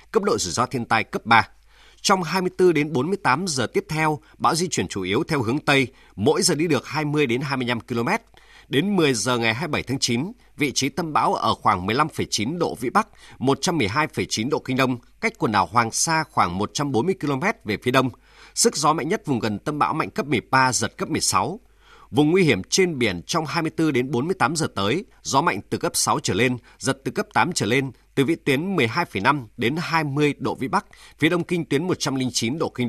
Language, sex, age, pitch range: Vietnamese, male, 30-49, 125-165 Hz